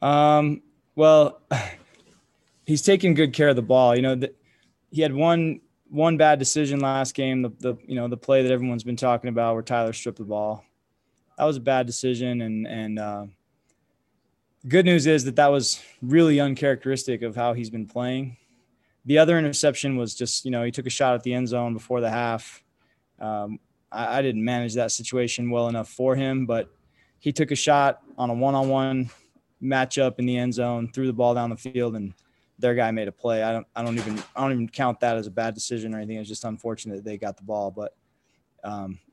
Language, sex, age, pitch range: English, male, 20-39, 115-135 Hz